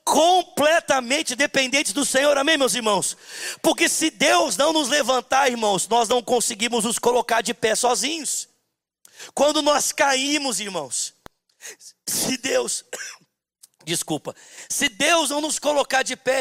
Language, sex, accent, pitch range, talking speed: Portuguese, male, Brazilian, 255-310 Hz, 130 wpm